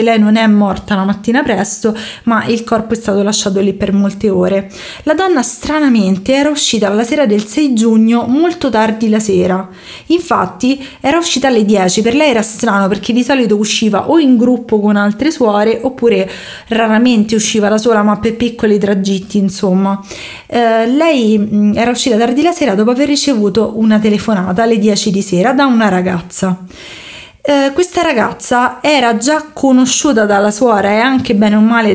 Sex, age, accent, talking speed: female, 20-39, native, 175 wpm